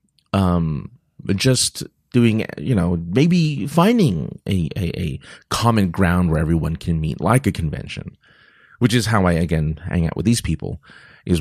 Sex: male